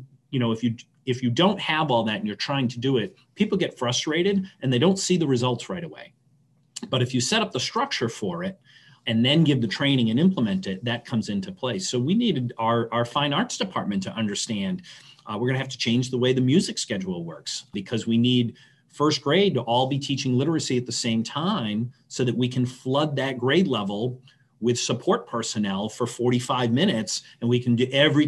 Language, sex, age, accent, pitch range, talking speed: English, male, 40-59, American, 120-150 Hz, 220 wpm